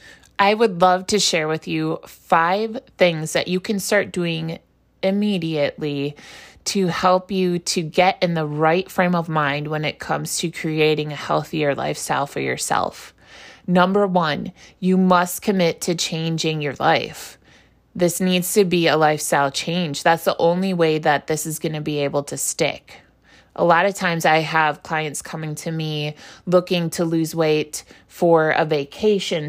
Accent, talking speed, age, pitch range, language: American, 165 wpm, 20-39, 160-190 Hz, English